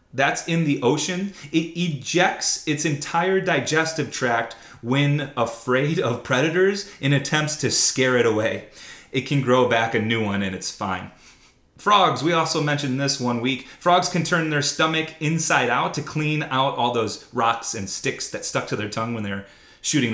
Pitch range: 125-175 Hz